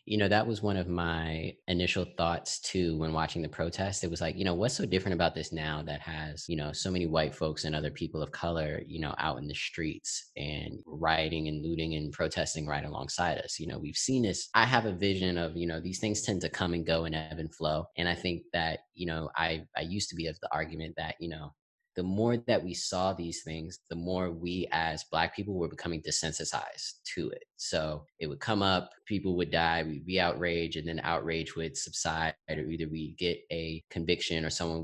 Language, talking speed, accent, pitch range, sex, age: English, 230 wpm, American, 80-90 Hz, male, 20-39